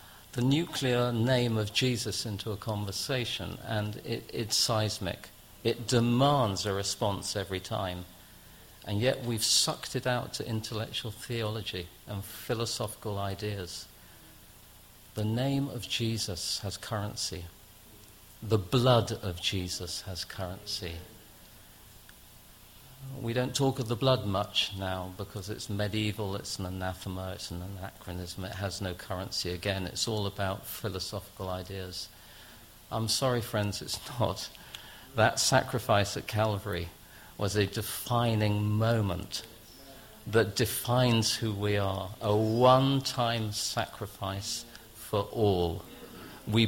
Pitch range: 95-115 Hz